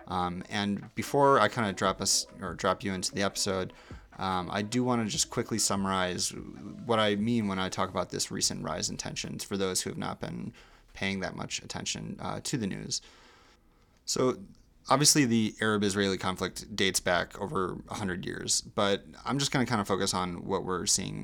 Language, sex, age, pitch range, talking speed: English, male, 20-39, 95-110 Hz, 200 wpm